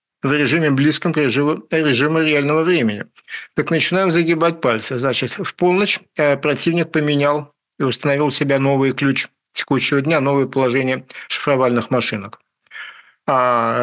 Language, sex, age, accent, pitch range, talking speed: Russian, male, 50-69, native, 130-155 Hz, 125 wpm